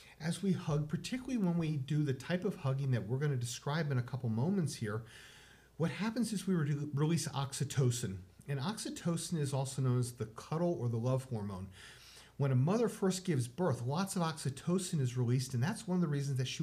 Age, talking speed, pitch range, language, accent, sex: 40-59, 205 wpm, 120-170 Hz, English, American, male